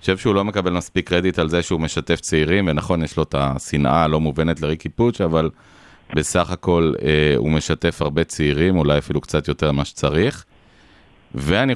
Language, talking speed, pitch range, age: Hebrew, 185 wpm, 75-90 Hz, 30-49